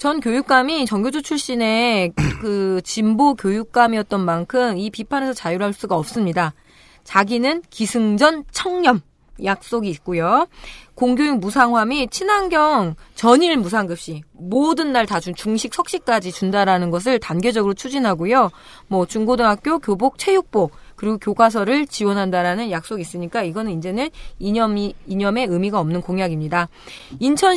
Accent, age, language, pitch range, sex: native, 20-39, Korean, 190-270 Hz, female